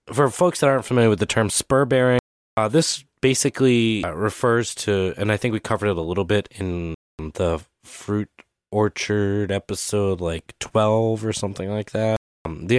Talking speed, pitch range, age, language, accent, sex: 180 wpm, 95-120 Hz, 20-39, English, American, male